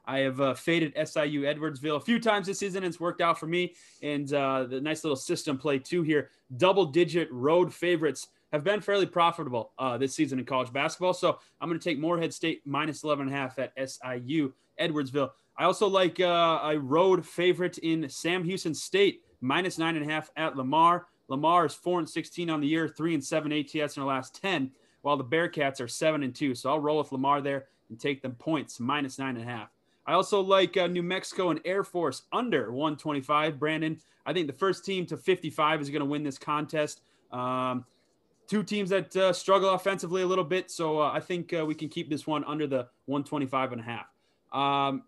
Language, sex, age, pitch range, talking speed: English, male, 20-39, 145-175 Hz, 210 wpm